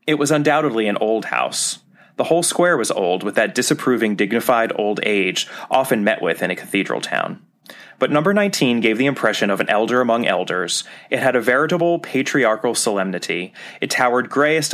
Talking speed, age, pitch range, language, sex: 180 wpm, 30-49, 105-145 Hz, English, male